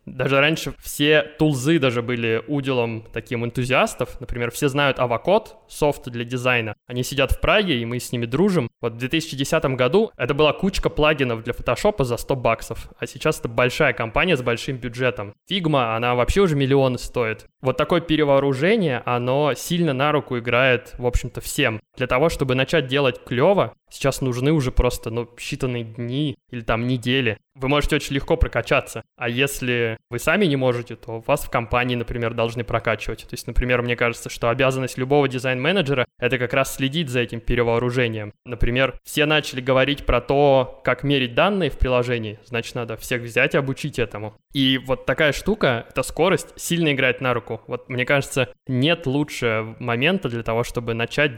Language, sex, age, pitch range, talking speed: Russian, male, 20-39, 120-145 Hz, 175 wpm